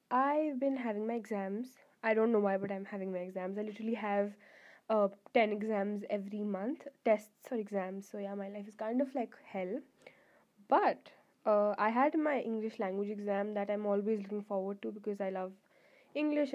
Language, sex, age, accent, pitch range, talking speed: English, female, 10-29, Indian, 205-250 Hz, 190 wpm